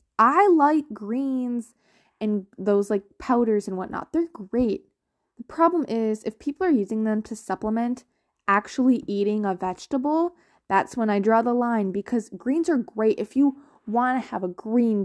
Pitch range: 205-265 Hz